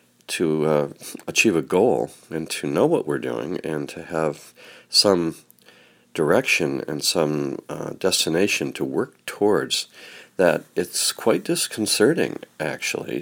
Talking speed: 125 wpm